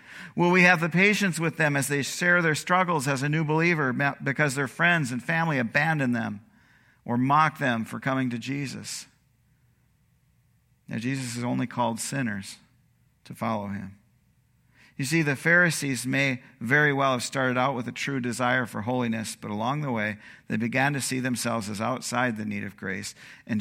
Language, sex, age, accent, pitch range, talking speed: English, male, 50-69, American, 110-140 Hz, 180 wpm